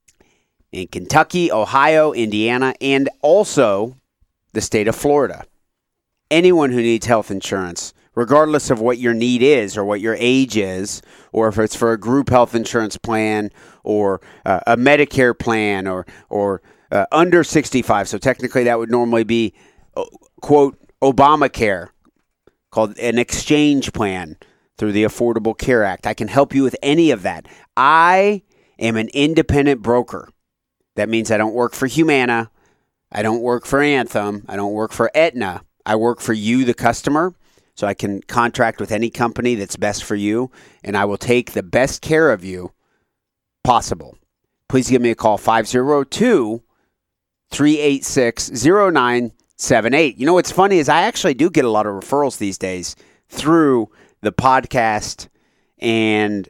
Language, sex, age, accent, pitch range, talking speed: English, male, 30-49, American, 105-135 Hz, 155 wpm